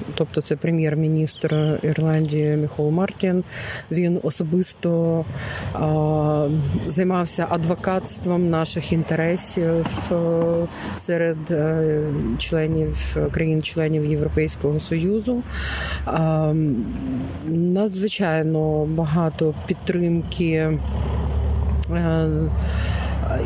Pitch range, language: 150-170 Hz, Ukrainian